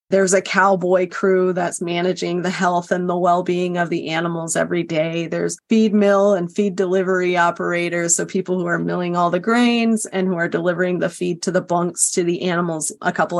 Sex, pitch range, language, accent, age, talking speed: female, 180-210 Hz, English, American, 30-49, 200 wpm